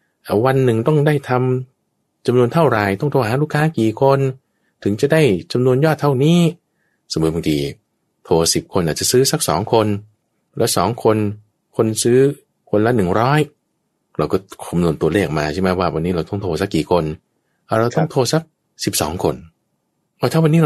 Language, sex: English, male